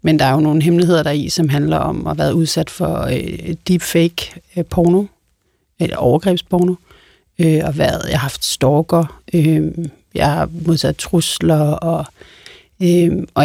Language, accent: Danish, native